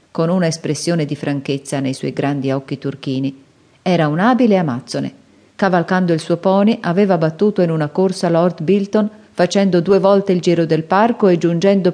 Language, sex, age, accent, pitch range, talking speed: Italian, female, 40-59, native, 155-210 Hz, 170 wpm